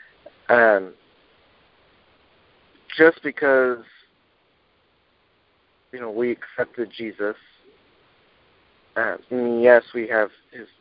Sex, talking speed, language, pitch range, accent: male, 70 wpm, English, 105-130 Hz, American